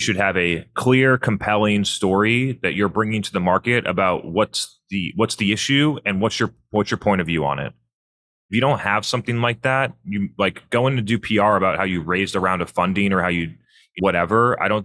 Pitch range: 95-120 Hz